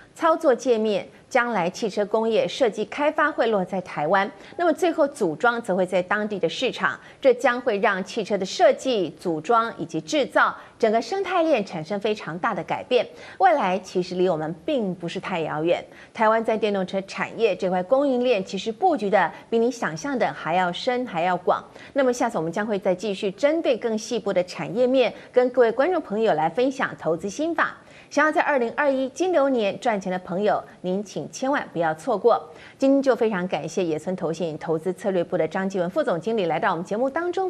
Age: 30-49